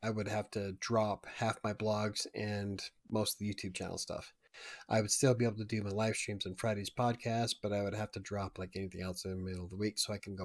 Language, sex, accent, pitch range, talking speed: English, male, American, 100-125 Hz, 270 wpm